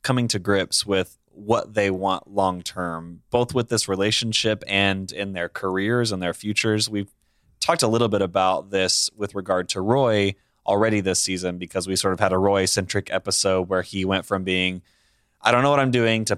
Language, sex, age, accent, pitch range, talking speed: English, male, 20-39, American, 95-110 Hz, 195 wpm